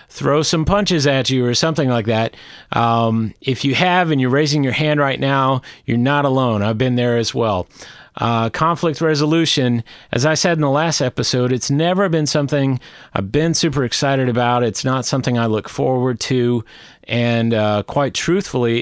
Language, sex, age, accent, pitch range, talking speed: English, male, 40-59, American, 120-150 Hz, 185 wpm